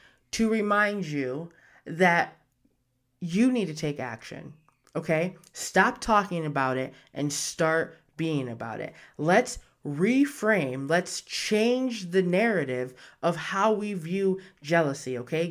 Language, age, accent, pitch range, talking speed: English, 20-39, American, 155-210 Hz, 120 wpm